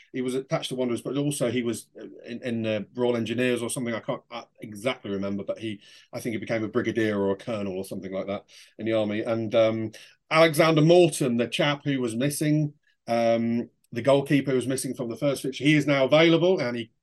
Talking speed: 225 wpm